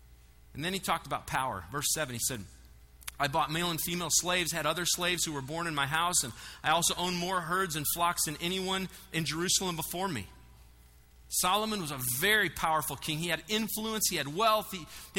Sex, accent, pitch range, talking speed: male, American, 120-200 Hz, 210 wpm